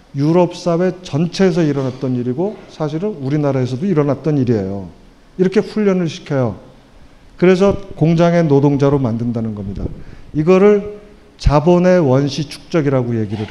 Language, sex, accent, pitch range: Korean, male, native, 130-175 Hz